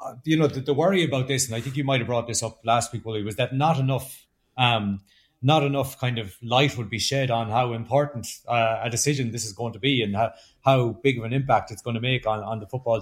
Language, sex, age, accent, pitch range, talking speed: English, male, 30-49, Irish, 115-135 Hz, 265 wpm